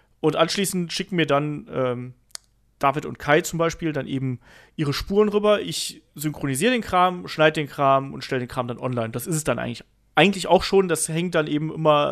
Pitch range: 135-160 Hz